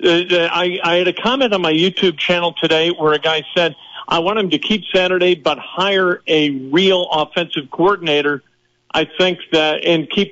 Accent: American